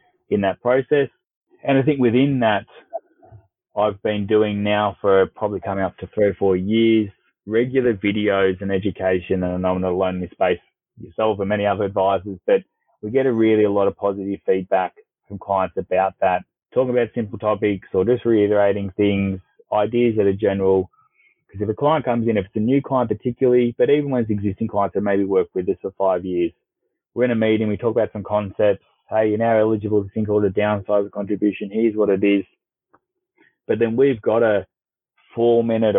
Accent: Australian